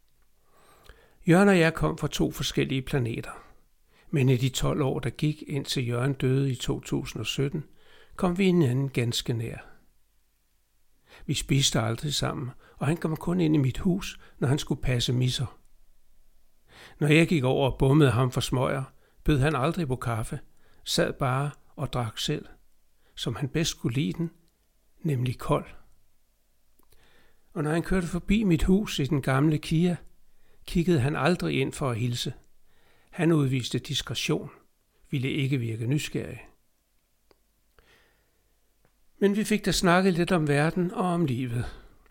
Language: Danish